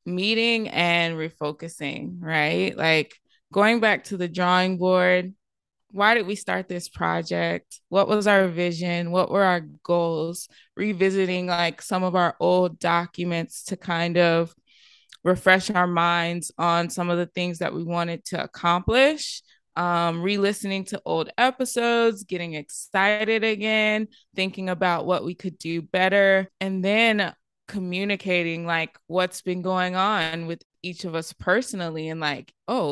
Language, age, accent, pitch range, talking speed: English, 20-39, American, 170-200 Hz, 145 wpm